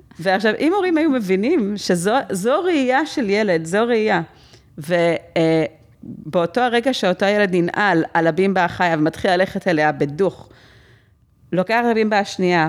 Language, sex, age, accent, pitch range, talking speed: Hebrew, female, 30-49, native, 165-220 Hz, 130 wpm